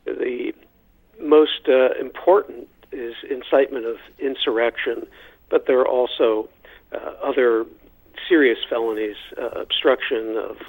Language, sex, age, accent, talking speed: English, male, 50-69, American, 105 wpm